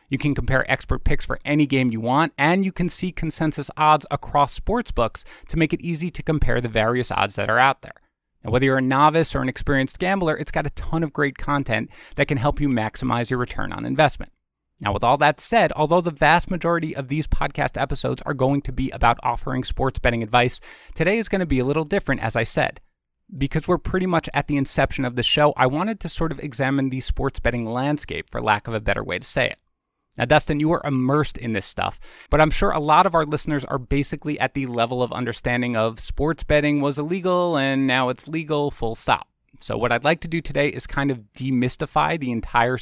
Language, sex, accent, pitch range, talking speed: English, male, American, 125-155 Hz, 230 wpm